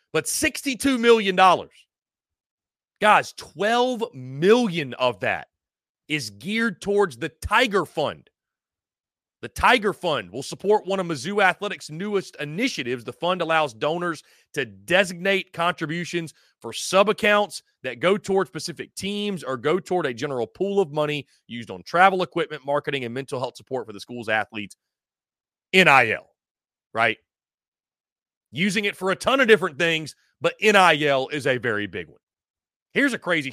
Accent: American